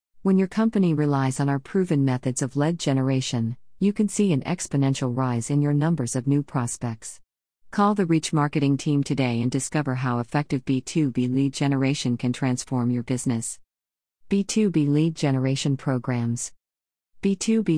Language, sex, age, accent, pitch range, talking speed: English, female, 40-59, American, 125-160 Hz, 150 wpm